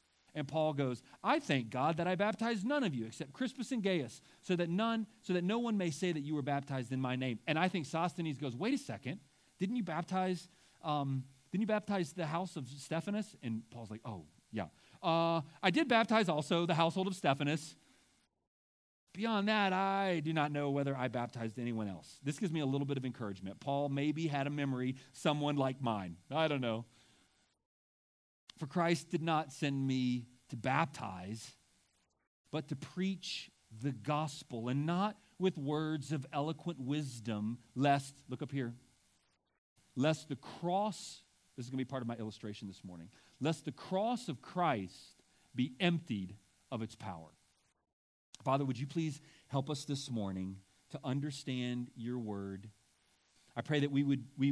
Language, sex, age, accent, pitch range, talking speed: English, male, 40-59, American, 120-170 Hz, 175 wpm